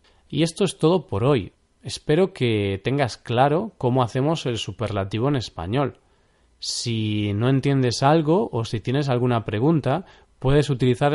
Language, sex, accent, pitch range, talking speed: Spanish, male, Spanish, 115-150 Hz, 145 wpm